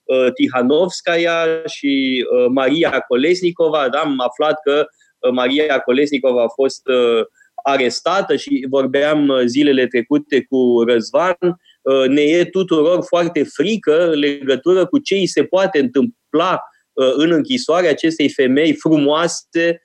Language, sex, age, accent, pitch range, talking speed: Romanian, male, 20-39, native, 135-195 Hz, 110 wpm